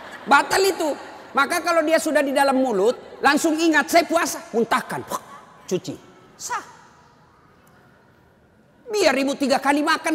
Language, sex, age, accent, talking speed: Indonesian, male, 40-59, native, 125 wpm